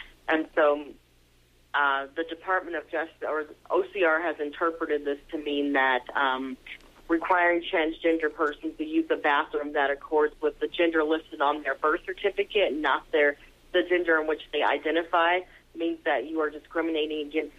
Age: 30-49